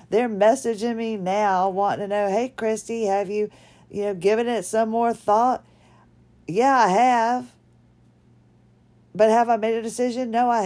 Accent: American